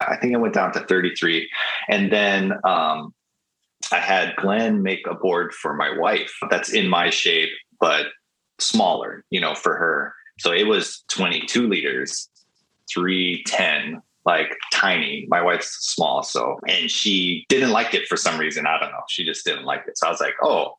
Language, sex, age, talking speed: English, male, 30-49, 180 wpm